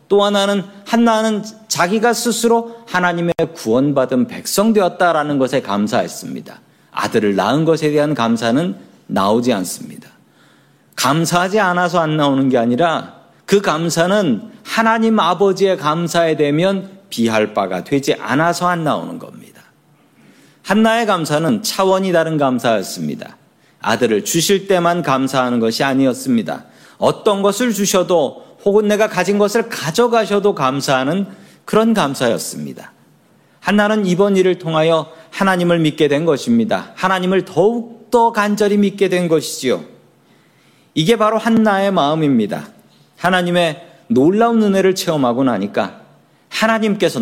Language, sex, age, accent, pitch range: Korean, male, 40-59, native, 155-215 Hz